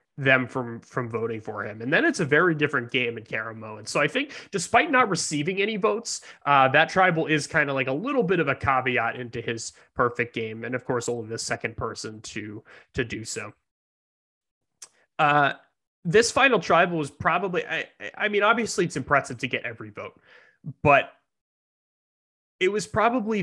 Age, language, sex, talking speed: 20-39, English, male, 185 wpm